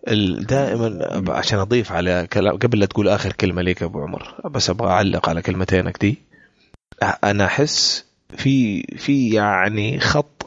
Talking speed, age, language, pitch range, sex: 145 wpm, 30-49, Arabic, 95-130 Hz, male